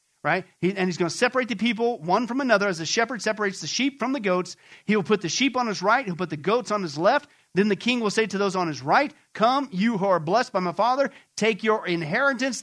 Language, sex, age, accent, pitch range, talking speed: English, male, 40-59, American, 180-235 Hz, 270 wpm